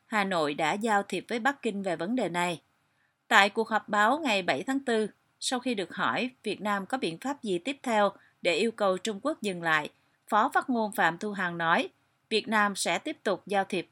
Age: 30-49